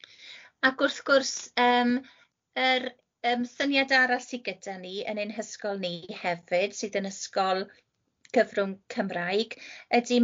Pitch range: 195-240 Hz